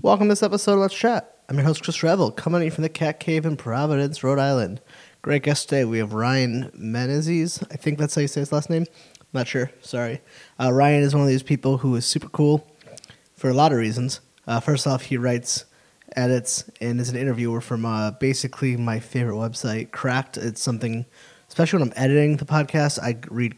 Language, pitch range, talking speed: English, 115-145 Hz, 220 wpm